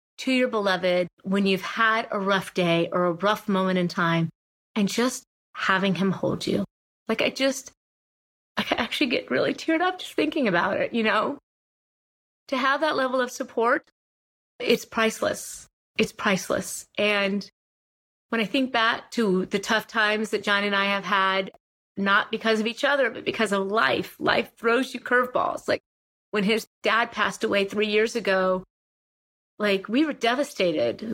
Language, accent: English, American